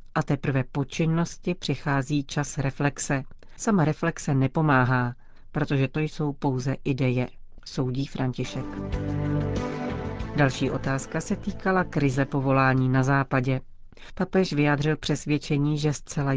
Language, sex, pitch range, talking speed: Czech, female, 135-155 Hz, 110 wpm